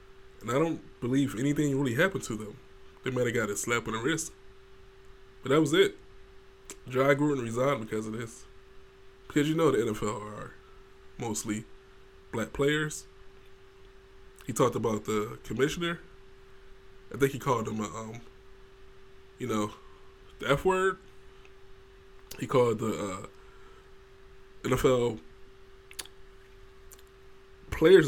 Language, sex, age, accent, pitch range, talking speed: English, male, 20-39, American, 95-130 Hz, 125 wpm